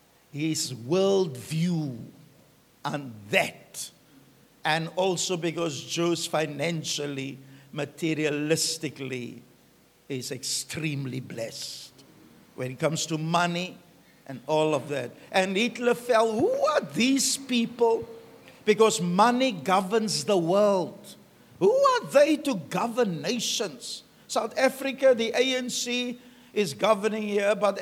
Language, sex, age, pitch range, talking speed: English, male, 60-79, 155-220 Hz, 105 wpm